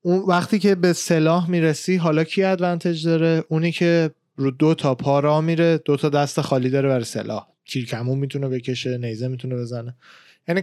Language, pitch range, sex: Persian, 135-165 Hz, male